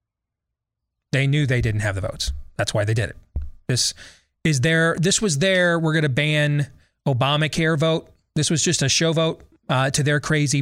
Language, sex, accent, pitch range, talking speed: English, male, American, 110-165 Hz, 190 wpm